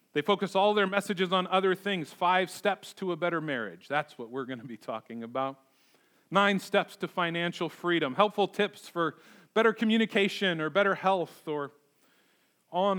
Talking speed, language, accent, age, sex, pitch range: 170 wpm, English, American, 40-59, male, 140-215 Hz